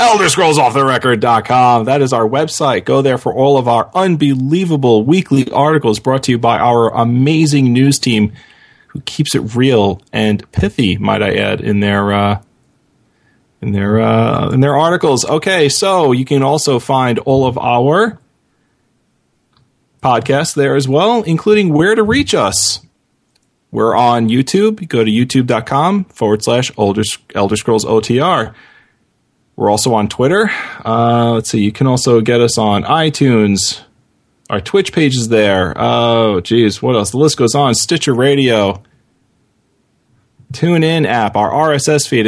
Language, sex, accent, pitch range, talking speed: English, male, American, 115-155 Hz, 150 wpm